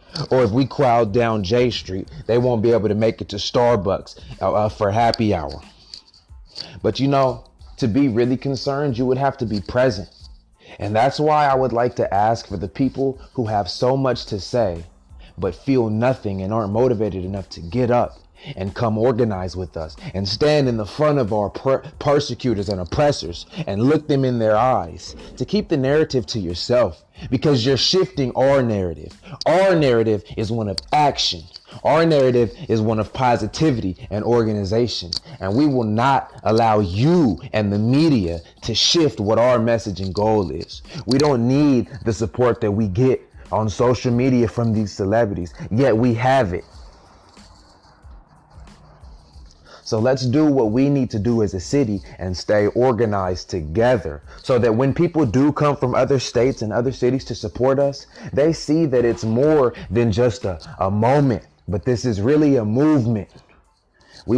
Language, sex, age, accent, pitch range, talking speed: English, male, 30-49, American, 100-130 Hz, 175 wpm